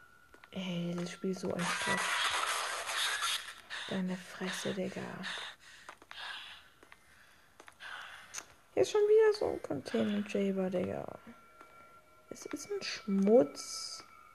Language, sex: German, female